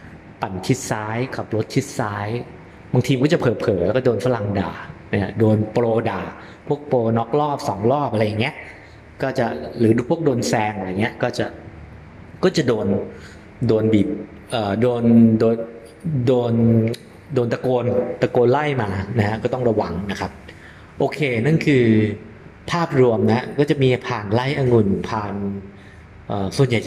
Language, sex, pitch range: English, male, 100-125 Hz